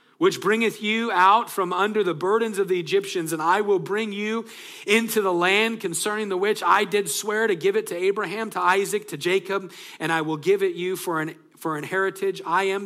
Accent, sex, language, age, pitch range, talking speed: American, male, English, 40-59, 165-215 Hz, 220 wpm